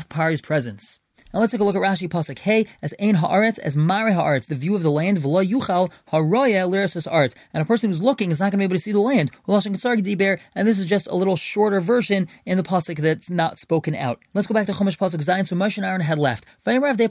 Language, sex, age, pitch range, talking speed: English, male, 20-39, 165-210 Hz, 245 wpm